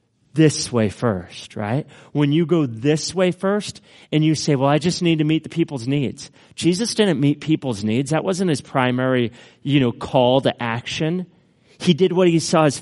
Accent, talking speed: American, 195 wpm